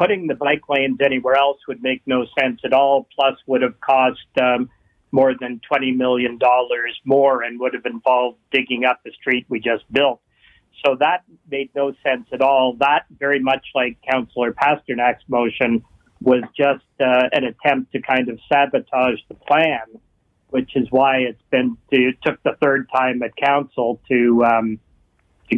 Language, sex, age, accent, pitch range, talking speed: English, male, 40-59, American, 125-135 Hz, 175 wpm